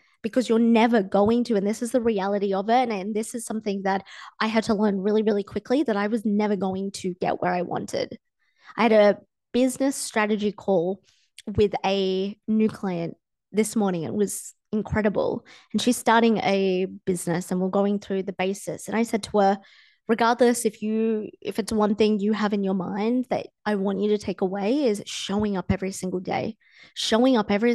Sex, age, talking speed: female, 20-39, 205 wpm